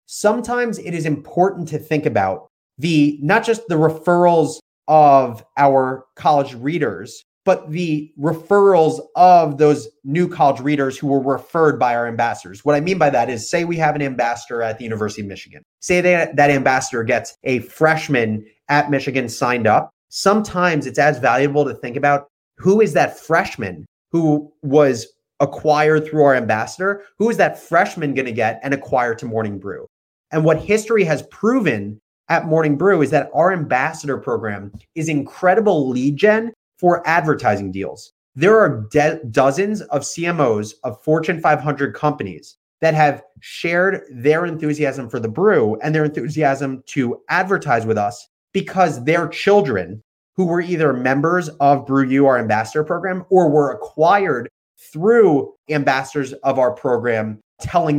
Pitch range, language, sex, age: 130-170 Hz, English, male, 30-49